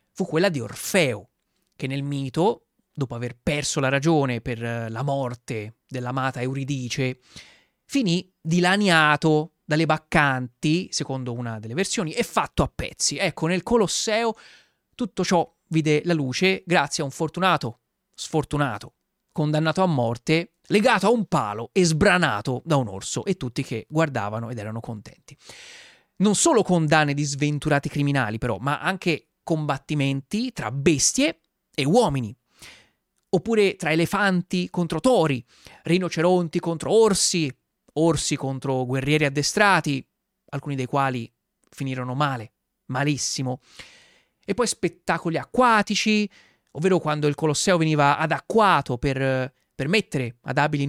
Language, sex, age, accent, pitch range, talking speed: Italian, male, 30-49, native, 135-185 Hz, 125 wpm